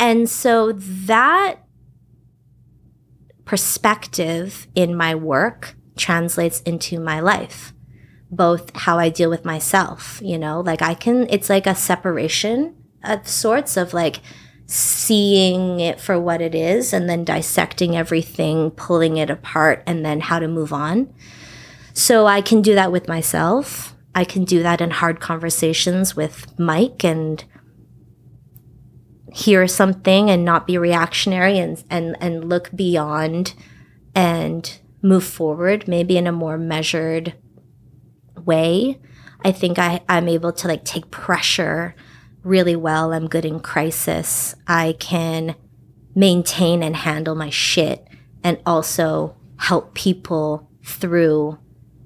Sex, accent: female, American